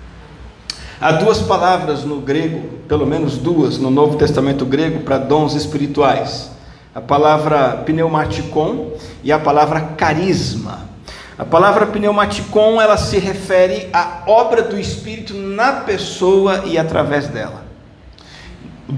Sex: male